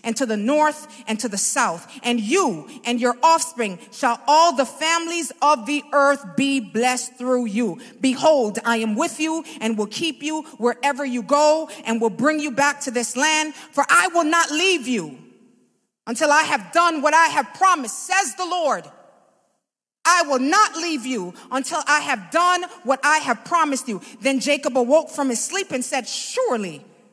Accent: American